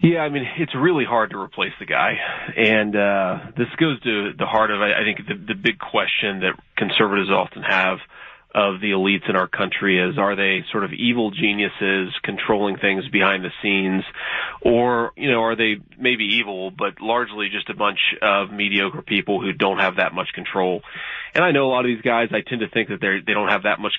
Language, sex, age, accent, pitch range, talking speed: English, male, 30-49, American, 100-115 Hz, 215 wpm